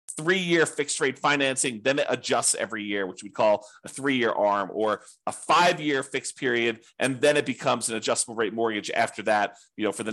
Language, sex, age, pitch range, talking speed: English, male, 40-59, 115-150 Hz, 200 wpm